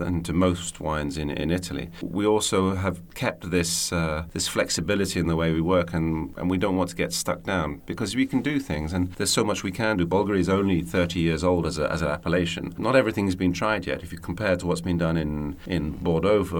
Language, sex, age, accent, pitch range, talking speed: English, male, 40-59, British, 80-90 Hz, 255 wpm